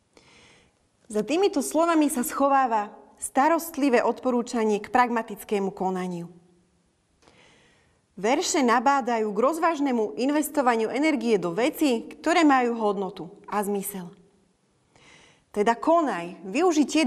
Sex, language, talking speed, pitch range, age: female, Slovak, 90 wpm, 200-275 Hz, 30-49